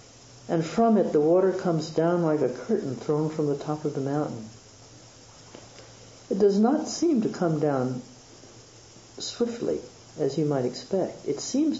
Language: English